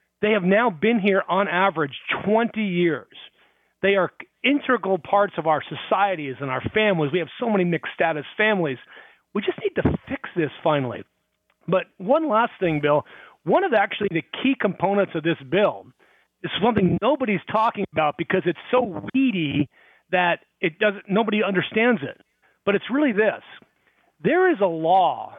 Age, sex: 40-59, male